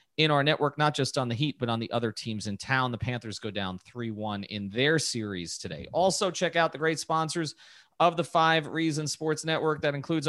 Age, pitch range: 30-49, 120-155 Hz